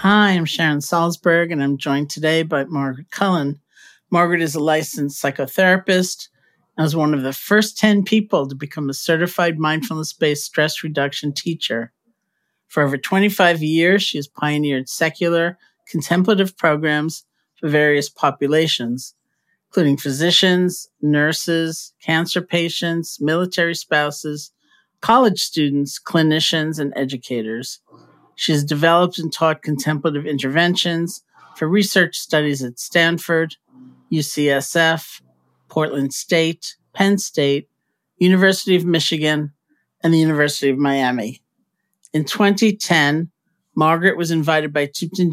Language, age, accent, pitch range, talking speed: English, 50-69, American, 145-175 Hz, 120 wpm